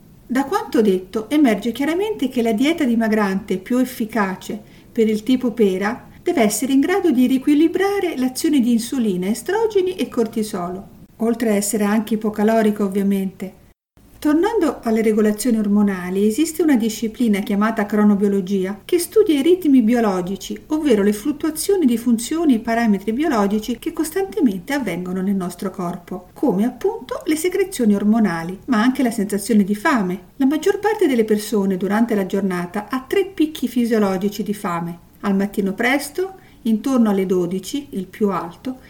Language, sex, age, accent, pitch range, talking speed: Italian, female, 50-69, native, 200-280 Hz, 145 wpm